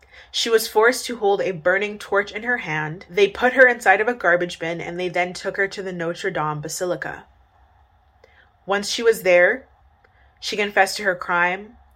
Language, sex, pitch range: English, female, 175-210 Hz